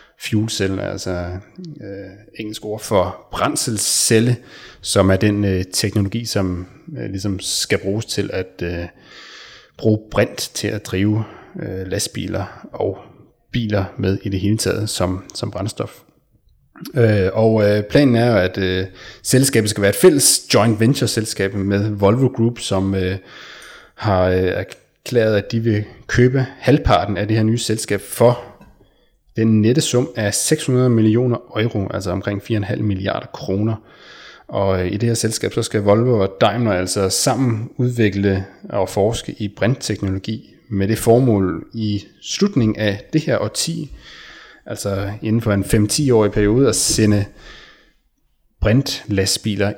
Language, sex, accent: Danish, male, native